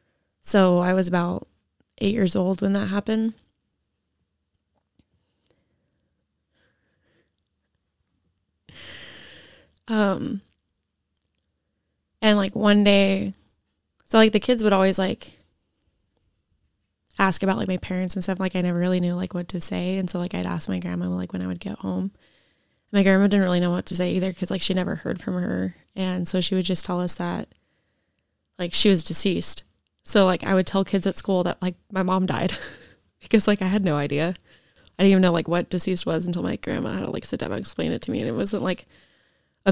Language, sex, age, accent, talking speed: English, female, 20-39, American, 185 wpm